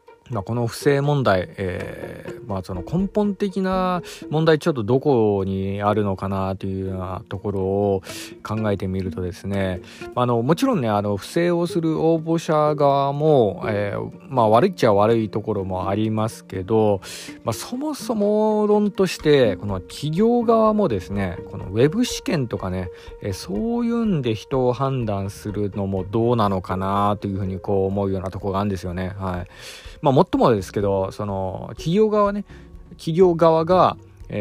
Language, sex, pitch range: Japanese, male, 100-150 Hz